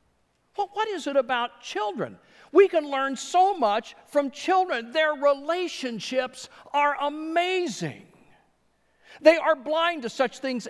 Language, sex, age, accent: English, male, 50-69, American